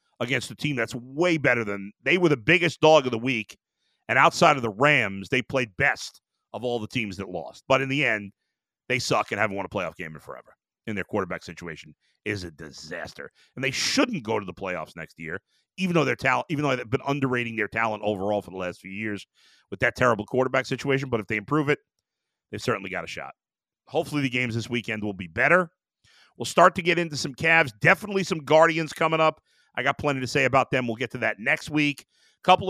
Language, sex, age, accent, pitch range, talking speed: English, male, 40-59, American, 115-165 Hz, 225 wpm